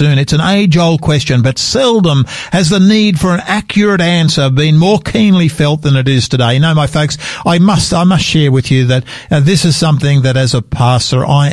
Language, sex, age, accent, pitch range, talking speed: English, male, 50-69, Australian, 120-160 Hz, 220 wpm